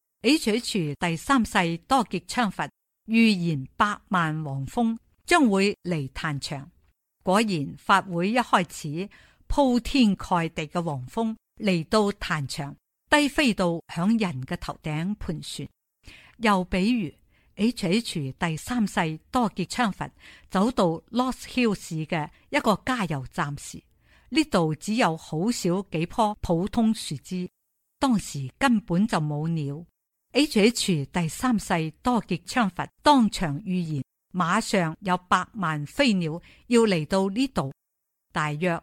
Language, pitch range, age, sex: Chinese, 165-225 Hz, 50-69, female